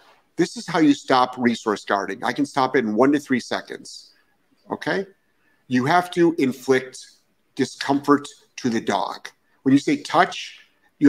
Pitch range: 115-155 Hz